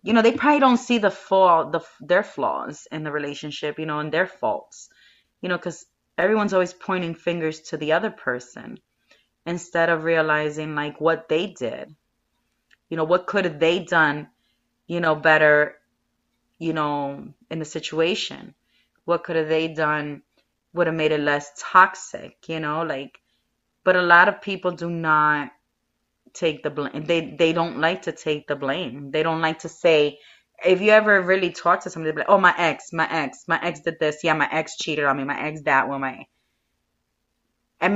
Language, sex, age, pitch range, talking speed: English, female, 30-49, 150-180 Hz, 190 wpm